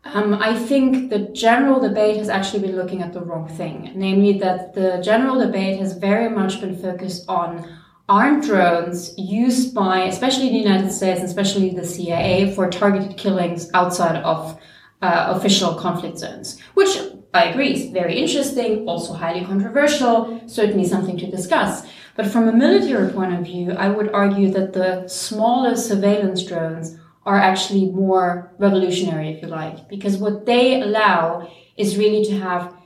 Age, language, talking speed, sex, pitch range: 20-39, English, 165 wpm, female, 180-210 Hz